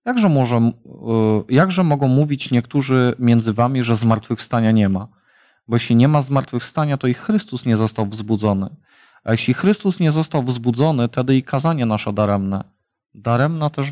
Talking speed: 150 wpm